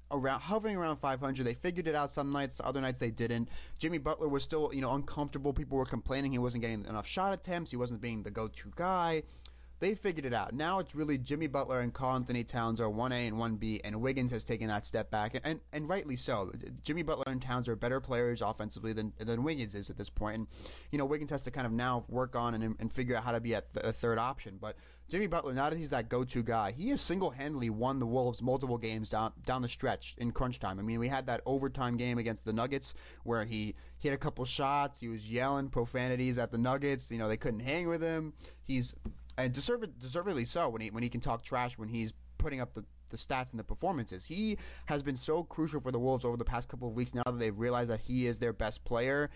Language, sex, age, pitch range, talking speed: English, male, 30-49, 115-140 Hz, 245 wpm